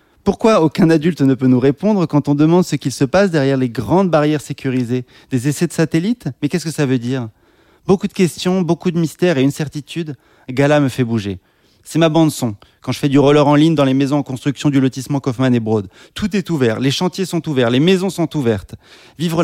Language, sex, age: French, male, 30-49